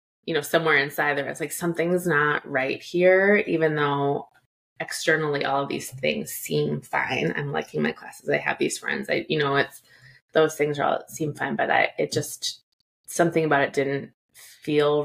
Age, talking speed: 20-39, 190 wpm